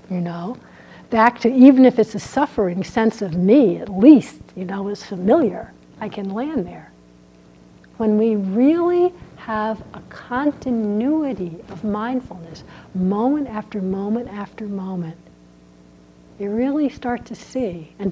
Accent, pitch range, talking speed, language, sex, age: American, 160-230 Hz, 135 wpm, English, female, 60-79